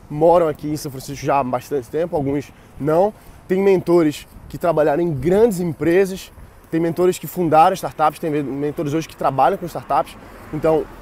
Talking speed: 170 wpm